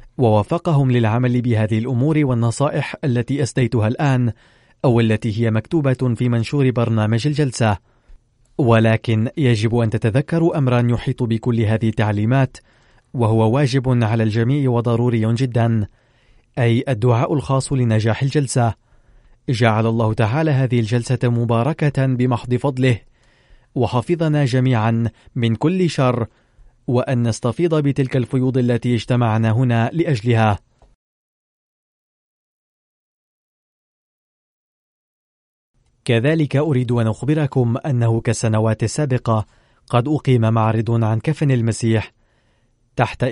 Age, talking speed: 30-49, 100 wpm